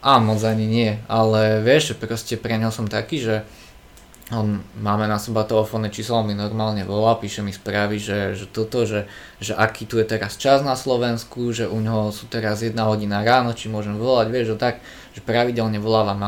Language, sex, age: Slovak, male, 20-39